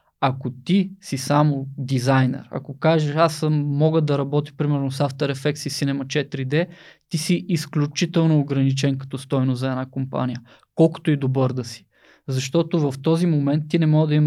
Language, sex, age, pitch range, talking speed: Bulgarian, male, 20-39, 140-165 Hz, 170 wpm